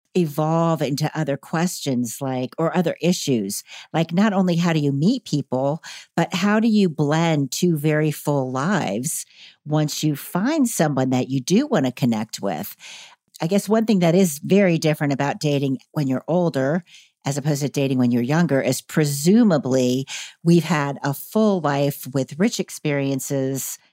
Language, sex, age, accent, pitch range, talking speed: English, female, 50-69, American, 140-180 Hz, 165 wpm